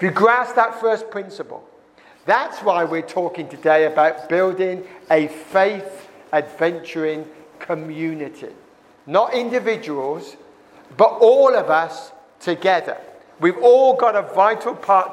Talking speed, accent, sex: 115 wpm, British, male